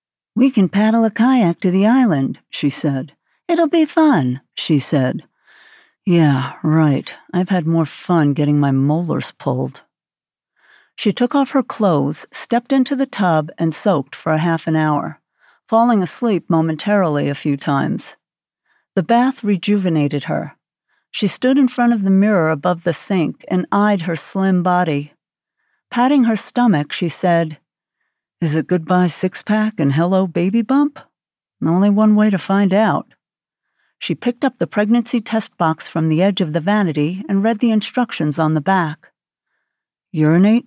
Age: 60-79